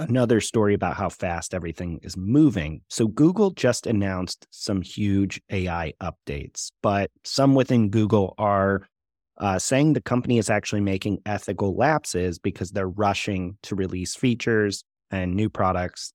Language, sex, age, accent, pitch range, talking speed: English, male, 30-49, American, 95-120 Hz, 145 wpm